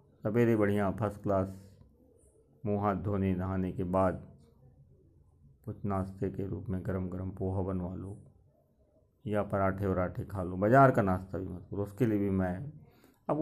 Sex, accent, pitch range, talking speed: male, native, 95-130 Hz, 160 wpm